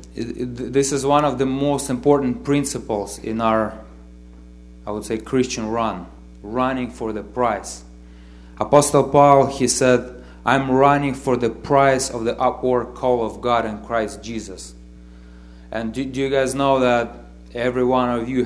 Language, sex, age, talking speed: English, male, 30-49, 160 wpm